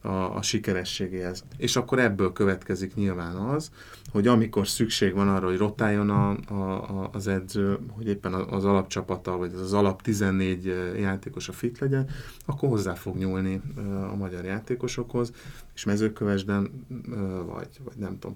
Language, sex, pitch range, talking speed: Hungarian, male, 95-115 Hz, 155 wpm